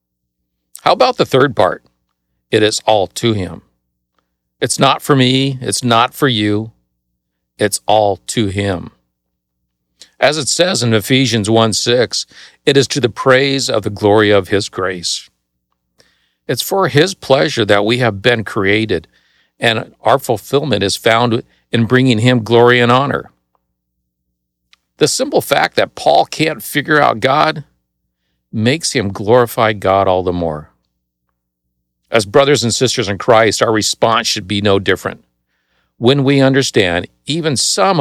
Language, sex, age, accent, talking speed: English, male, 50-69, American, 145 wpm